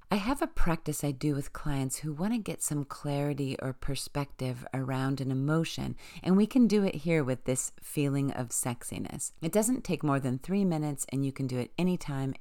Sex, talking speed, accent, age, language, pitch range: female, 210 wpm, American, 40-59, English, 135-175 Hz